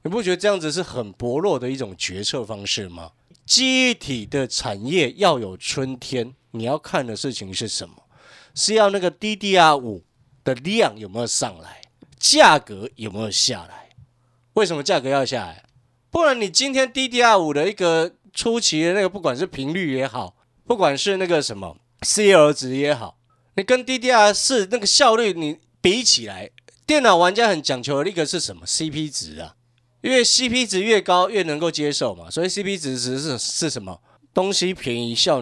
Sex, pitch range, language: male, 125-195 Hz, Chinese